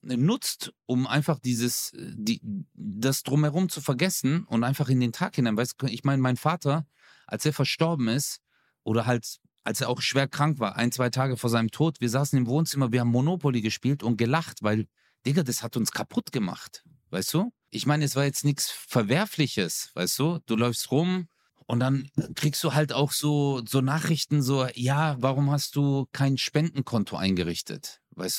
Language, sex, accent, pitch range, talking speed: German, male, German, 120-155 Hz, 185 wpm